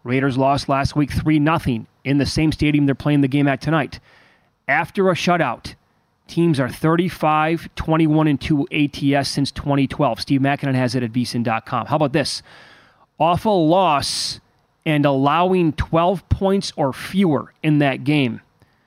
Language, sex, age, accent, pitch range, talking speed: English, male, 30-49, American, 130-165 Hz, 145 wpm